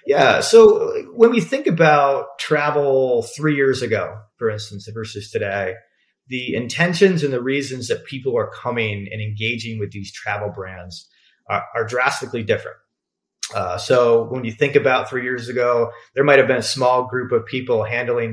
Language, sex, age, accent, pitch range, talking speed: English, male, 30-49, American, 110-145 Hz, 170 wpm